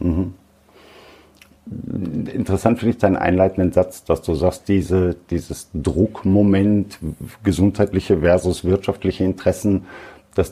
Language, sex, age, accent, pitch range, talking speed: German, male, 50-69, German, 90-110 Hz, 105 wpm